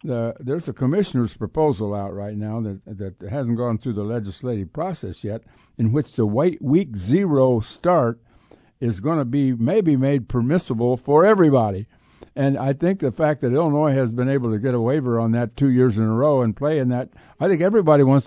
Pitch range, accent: 120-155 Hz, American